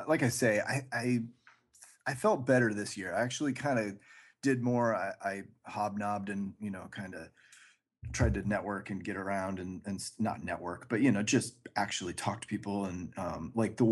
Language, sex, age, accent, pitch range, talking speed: English, male, 30-49, American, 100-115 Hz, 200 wpm